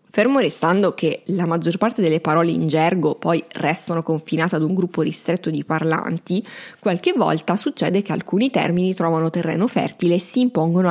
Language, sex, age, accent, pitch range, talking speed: Italian, female, 20-39, native, 160-190 Hz, 170 wpm